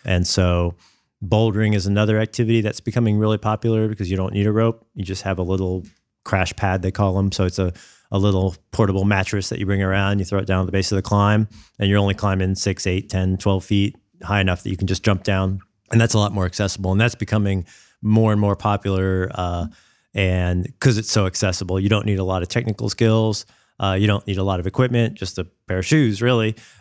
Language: English